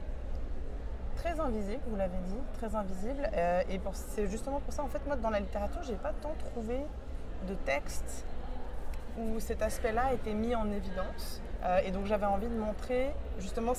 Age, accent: 20-39, French